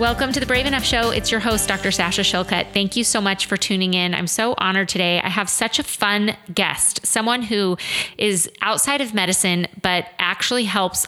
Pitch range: 170-220 Hz